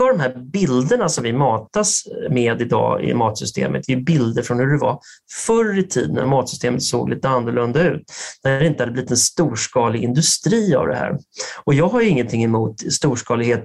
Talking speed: 195 wpm